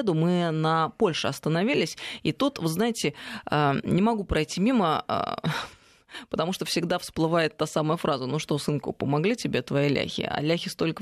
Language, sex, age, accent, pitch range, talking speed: Russian, female, 20-39, native, 150-185 Hz, 160 wpm